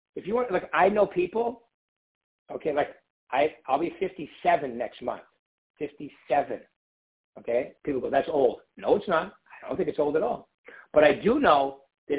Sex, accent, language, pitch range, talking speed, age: male, American, English, 130-170 Hz, 170 wpm, 60-79